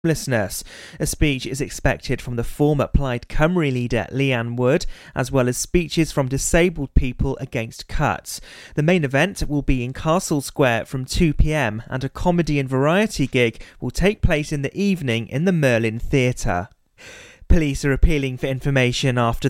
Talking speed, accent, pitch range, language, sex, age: 165 wpm, British, 125-155 Hz, English, male, 30-49